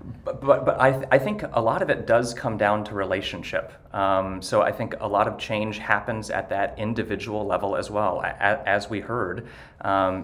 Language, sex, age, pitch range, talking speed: English, male, 30-49, 95-110 Hz, 210 wpm